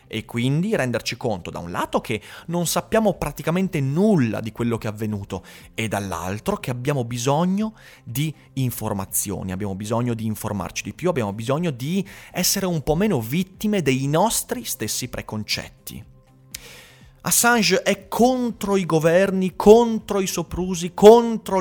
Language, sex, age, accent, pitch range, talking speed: Italian, male, 30-49, native, 110-170 Hz, 140 wpm